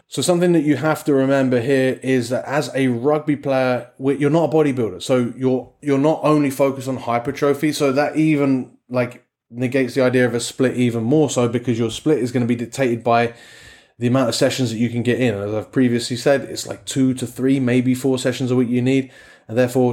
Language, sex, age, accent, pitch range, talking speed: English, male, 20-39, British, 120-140 Hz, 230 wpm